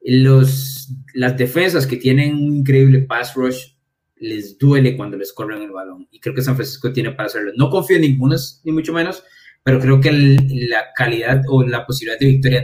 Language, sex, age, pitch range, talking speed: Spanish, male, 20-39, 125-150 Hz, 200 wpm